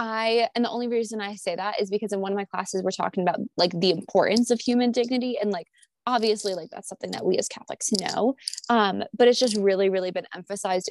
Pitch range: 195-240 Hz